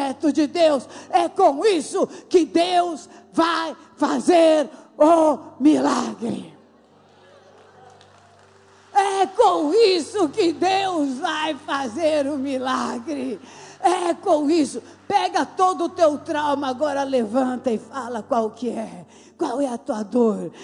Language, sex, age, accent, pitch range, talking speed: Portuguese, female, 40-59, Brazilian, 240-305 Hz, 115 wpm